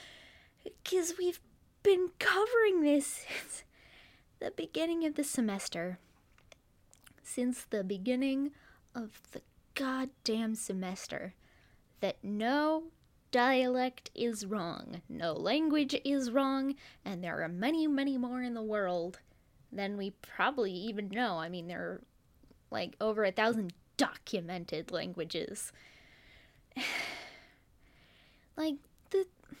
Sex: female